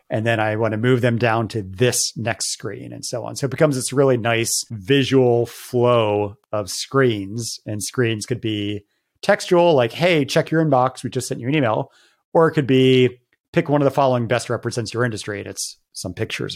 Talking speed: 210 wpm